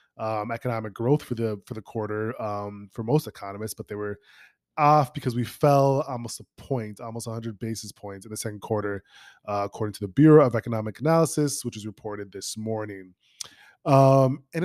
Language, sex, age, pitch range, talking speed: English, male, 20-39, 105-130 Hz, 185 wpm